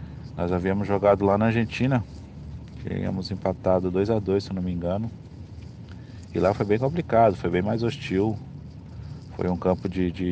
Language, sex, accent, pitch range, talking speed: Portuguese, male, Brazilian, 85-95 Hz, 165 wpm